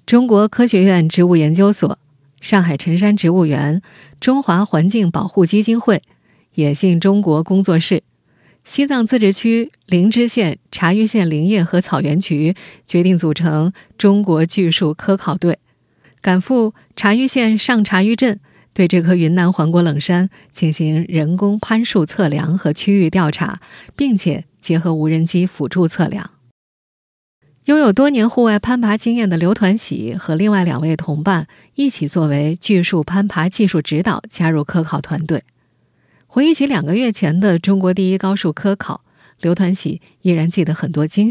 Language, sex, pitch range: Chinese, female, 160-205 Hz